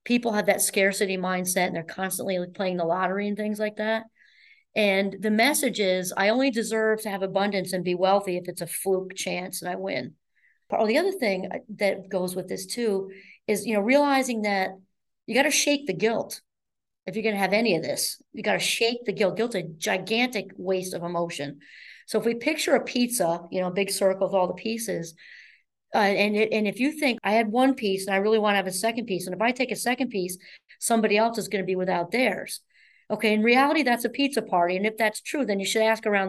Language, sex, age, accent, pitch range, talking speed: English, female, 40-59, American, 190-240 Hz, 230 wpm